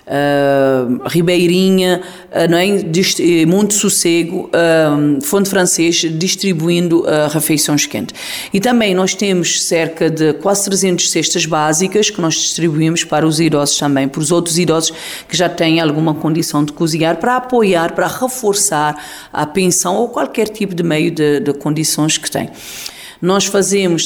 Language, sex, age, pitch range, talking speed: Portuguese, female, 40-59, 150-180 Hz, 150 wpm